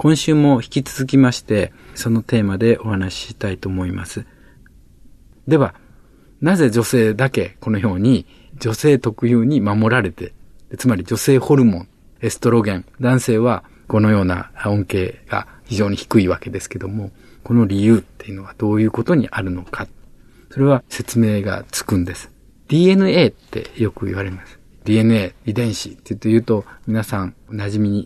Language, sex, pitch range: Japanese, male, 95-125 Hz